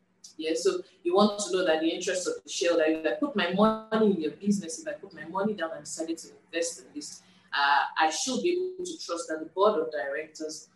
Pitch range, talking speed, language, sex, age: 160-215 Hz, 250 wpm, English, female, 20-39